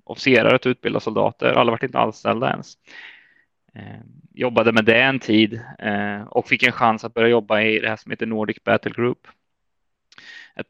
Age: 20-39